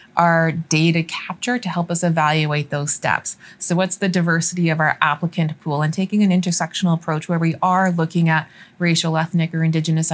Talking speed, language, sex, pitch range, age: 185 wpm, English, female, 160-185 Hz, 20-39